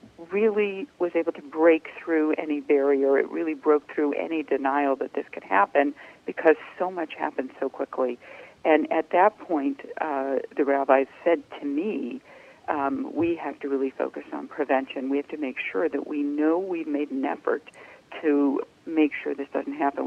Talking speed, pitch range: 180 wpm, 140-165 Hz